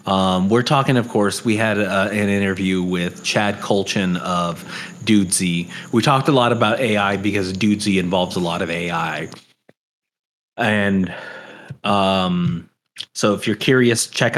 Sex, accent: male, American